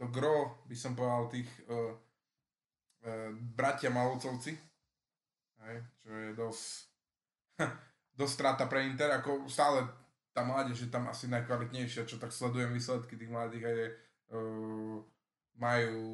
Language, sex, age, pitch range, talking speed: Slovak, male, 20-39, 115-135 Hz, 120 wpm